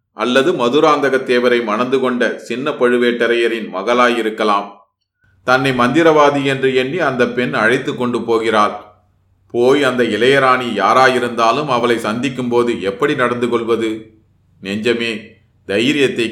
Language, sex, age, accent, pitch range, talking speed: Tamil, male, 30-49, native, 110-130 Hz, 105 wpm